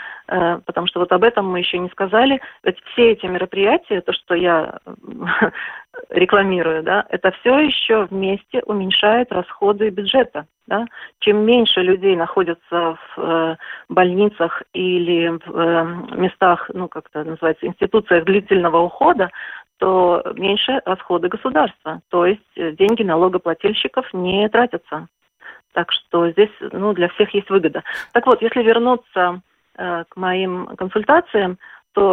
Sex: female